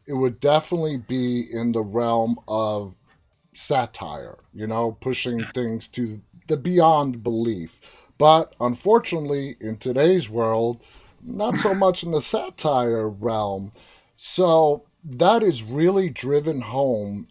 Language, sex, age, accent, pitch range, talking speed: English, male, 30-49, American, 115-150 Hz, 120 wpm